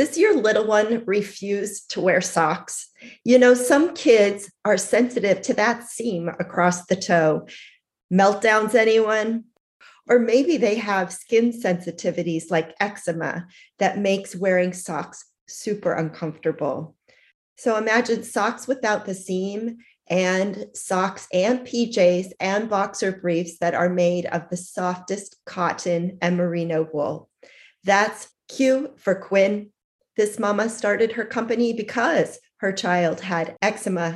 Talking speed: 130 wpm